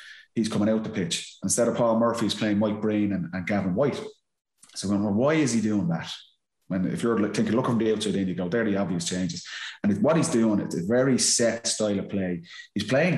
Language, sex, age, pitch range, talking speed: English, male, 30-49, 100-120 Hz, 250 wpm